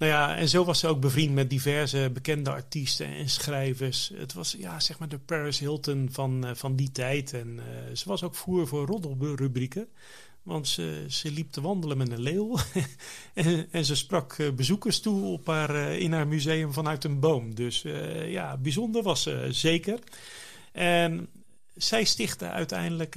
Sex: male